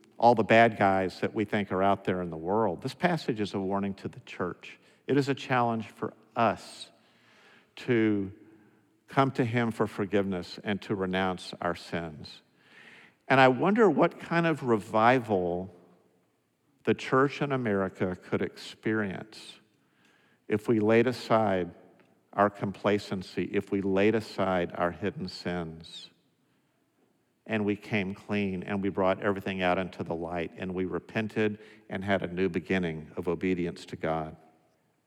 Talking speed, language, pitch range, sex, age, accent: 150 wpm, English, 95-120 Hz, male, 50-69, American